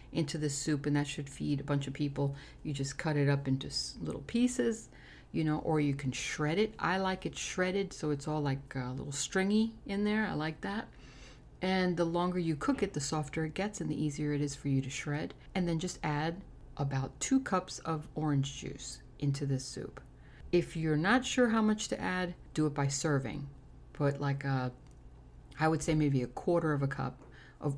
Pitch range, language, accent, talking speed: 140-180 Hz, English, American, 215 wpm